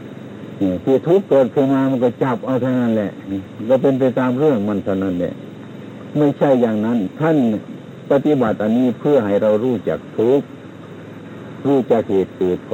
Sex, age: male, 60-79